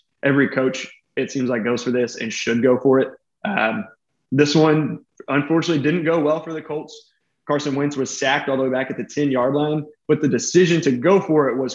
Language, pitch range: English, 130-155 Hz